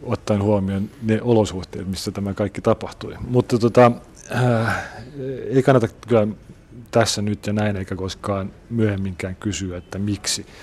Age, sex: 40-59, male